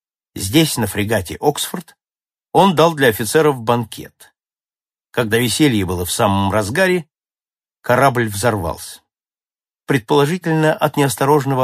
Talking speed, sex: 105 wpm, male